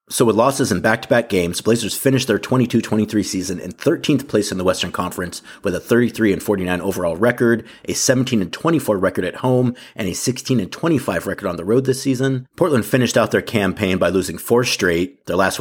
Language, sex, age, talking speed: English, male, 30-49, 185 wpm